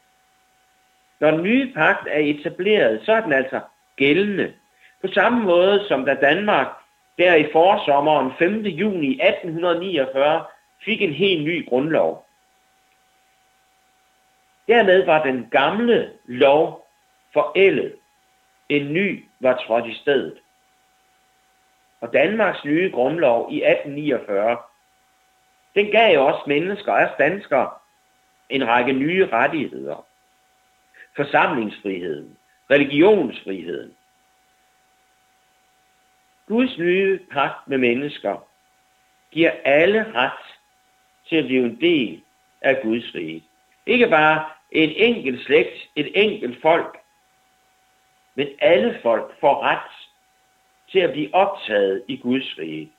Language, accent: Danish, native